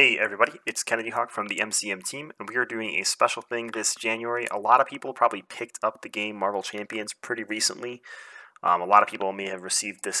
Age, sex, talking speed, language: 30-49, male, 235 wpm, English